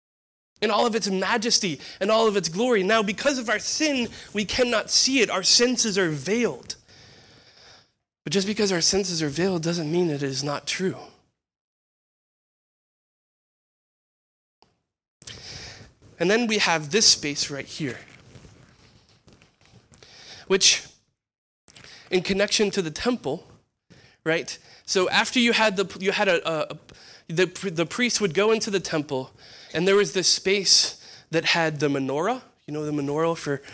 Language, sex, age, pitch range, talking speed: English, male, 20-39, 145-205 Hz, 145 wpm